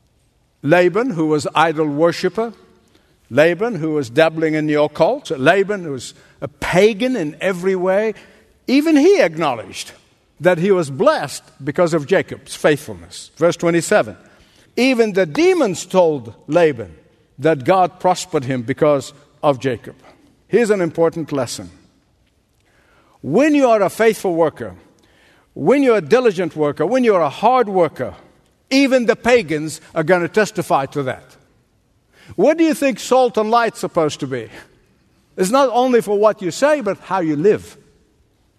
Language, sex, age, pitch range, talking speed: English, male, 60-79, 145-195 Hz, 150 wpm